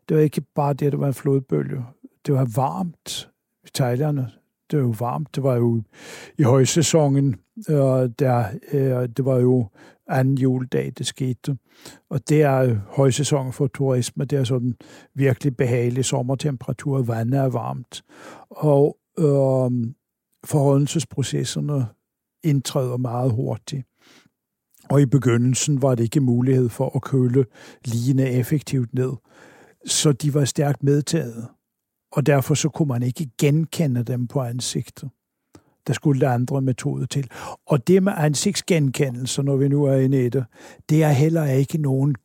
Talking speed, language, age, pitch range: 145 wpm, Danish, 60-79, 130-150 Hz